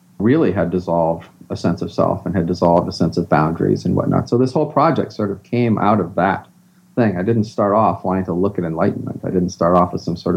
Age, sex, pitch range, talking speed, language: 40-59, male, 95-130 Hz, 250 wpm, English